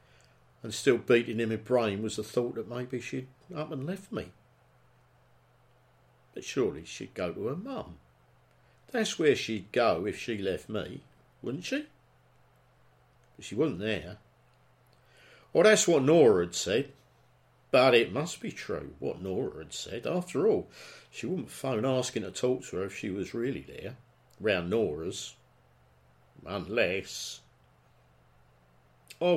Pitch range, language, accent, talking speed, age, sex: 100-140 Hz, English, British, 145 wpm, 50-69, male